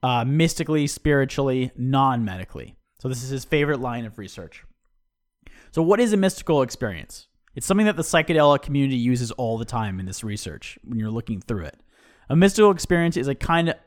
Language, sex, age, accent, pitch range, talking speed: English, male, 30-49, American, 125-165 Hz, 180 wpm